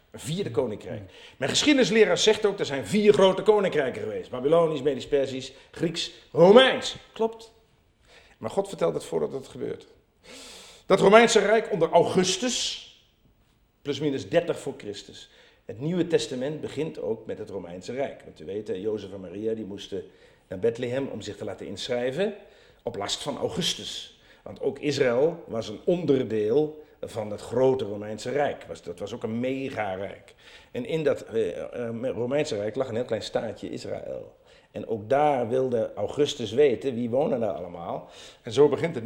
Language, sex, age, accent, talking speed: Dutch, male, 50-69, Dutch, 155 wpm